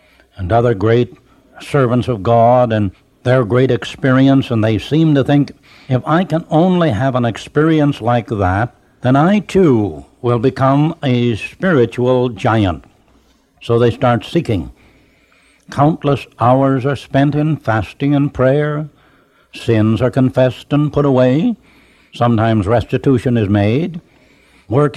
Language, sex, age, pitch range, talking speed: English, male, 60-79, 115-145 Hz, 130 wpm